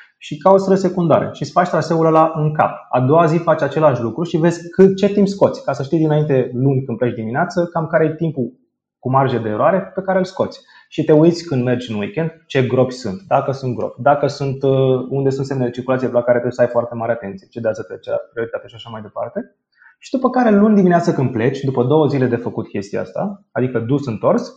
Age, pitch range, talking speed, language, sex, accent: 20-39, 125-170 Hz, 235 wpm, Romanian, male, native